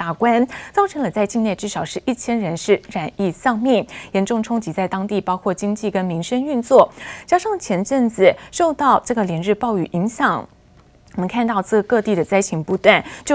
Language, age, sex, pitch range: Chinese, 20-39, female, 185-245 Hz